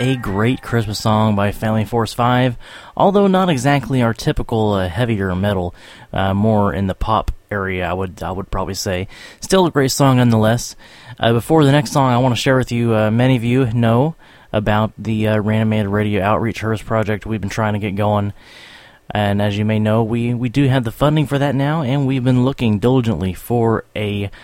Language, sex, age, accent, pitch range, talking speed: English, male, 20-39, American, 100-125 Hz, 205 wpm